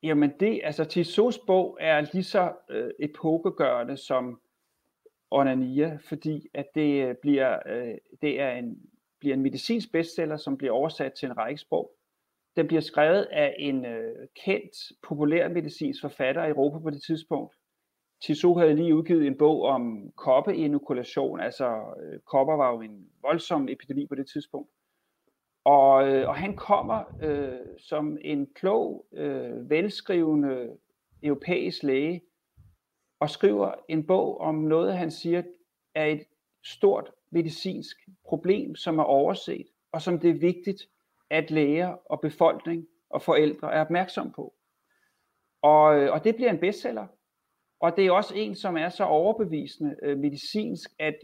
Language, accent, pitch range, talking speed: Danish, native, 145-180 Hz, 145 wpm